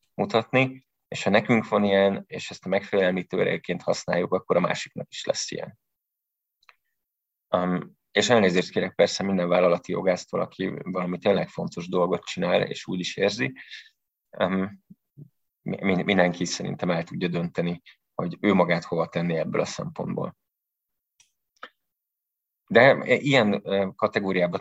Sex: male